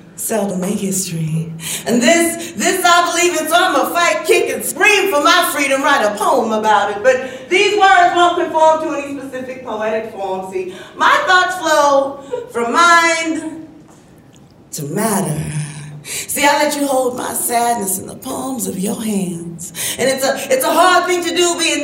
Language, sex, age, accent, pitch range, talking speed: English, female, 40-59, American, 190-295 Hz, 175 wpm